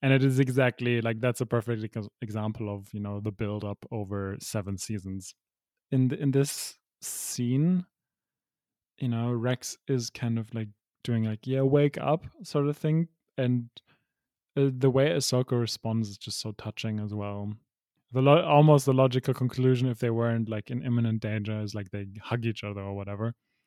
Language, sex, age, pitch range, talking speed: English, male, 20-39, 110-130 Hz, 175 wpm